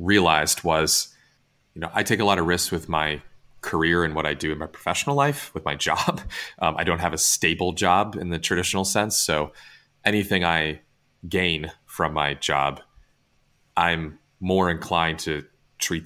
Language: English